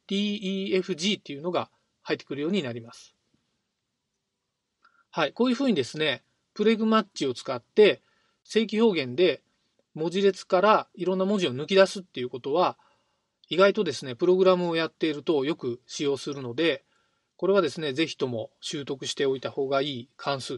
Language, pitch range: Japanese, 140-200 Hz